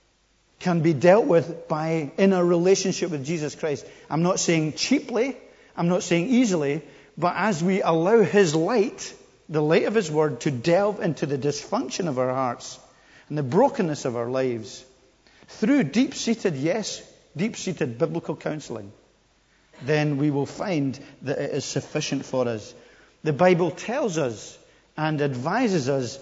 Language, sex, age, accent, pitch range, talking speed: English, male, 50-69, British, 145-195 Hz, 155 wpm